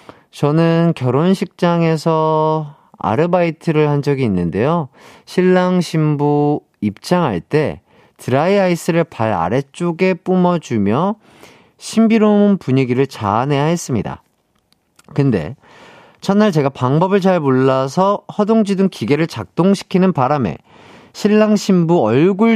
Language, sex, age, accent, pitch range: Korean, male, 40-59, native, 145-195 Hz